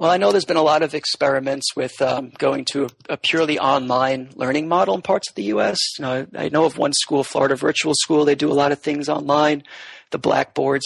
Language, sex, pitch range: English, male, 135-195 Hz